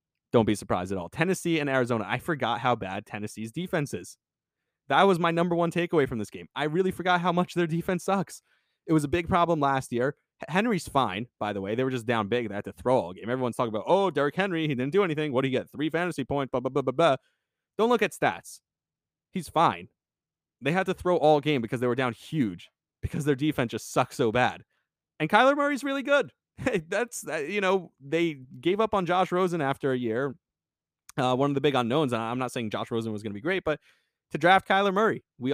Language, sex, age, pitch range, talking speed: English, male, 20-39, 120-170 Hz, 240 wpm